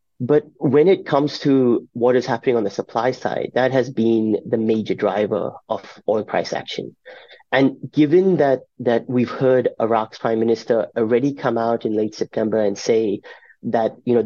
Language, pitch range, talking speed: English, 110-130 Hz, 175 wpm